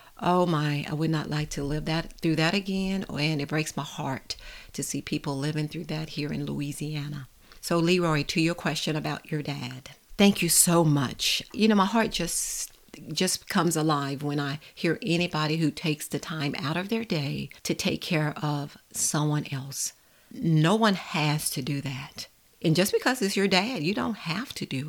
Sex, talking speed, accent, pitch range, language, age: female, 195 wpm, American, 150-195 Hz, English, 50-69